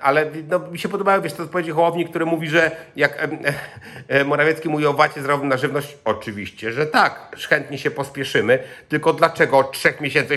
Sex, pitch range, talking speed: male, 140-180 Hz, 185 wpm